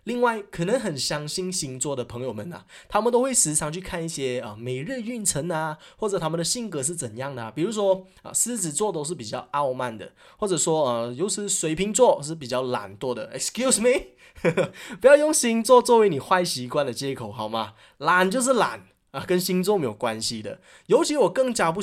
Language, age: Chinese, 20-39